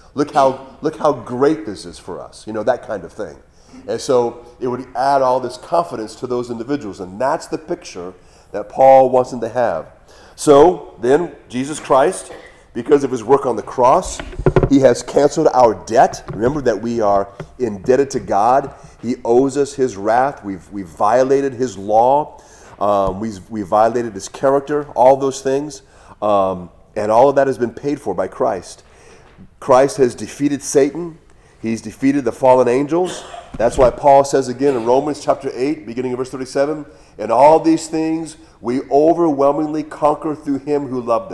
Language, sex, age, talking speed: English, male, 40-59, 180 wpm